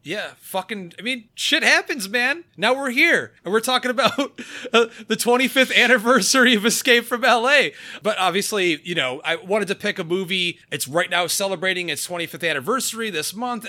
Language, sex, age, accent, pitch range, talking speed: English, male, 30-49, American, 145-220 Hz, 180 wpm